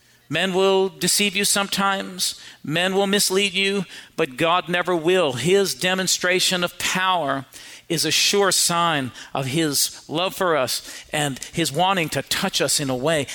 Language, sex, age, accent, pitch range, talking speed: English, male, 50-69, American, 165-220 Hz, 155 wpm